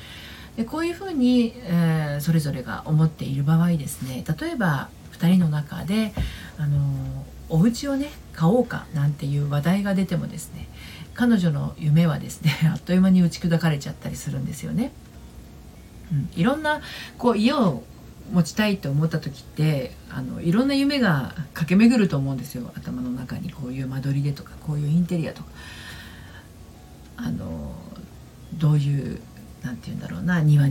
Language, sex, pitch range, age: Japanese, female, 140-180 Hz, 40-59